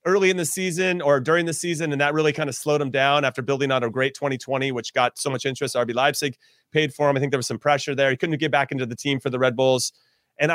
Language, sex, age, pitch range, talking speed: English, male, 30-49, 135-170 Hz, 290 wpm